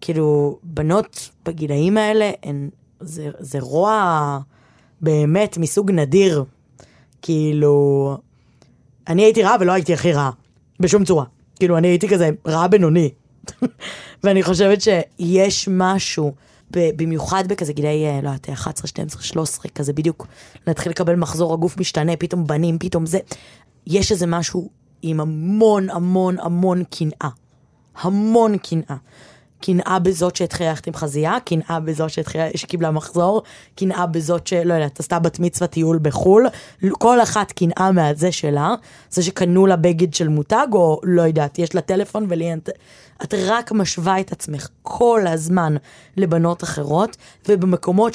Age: 20-39